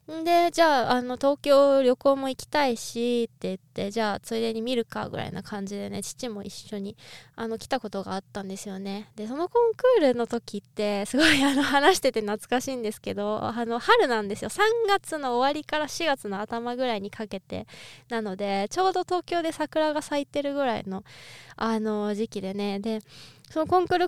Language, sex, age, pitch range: Japanese, female, 20-39, 215-300 Hz